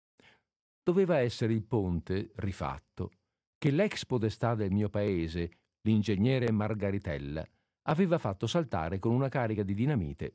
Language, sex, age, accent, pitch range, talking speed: Italian, male, 50-69, native, 95-135 Hz, 120 wpm